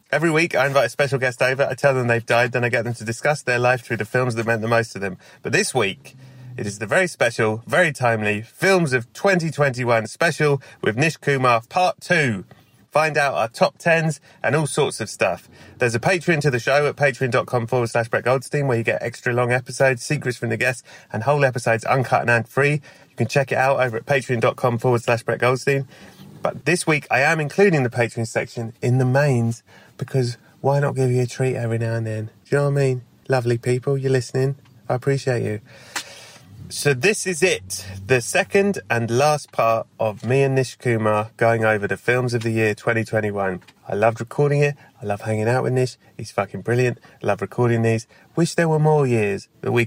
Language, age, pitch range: English, 30-49, 115-140 Hz